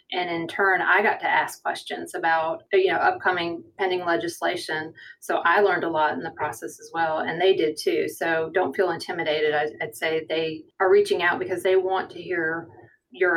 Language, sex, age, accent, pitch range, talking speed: English, female, 30-49, American, 165-210 Hz, 200 wpm